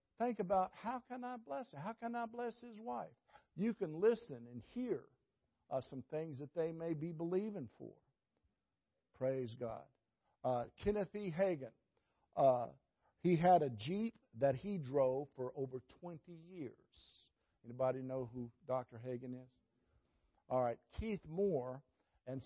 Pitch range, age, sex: 125-180 Hz, 50-69, male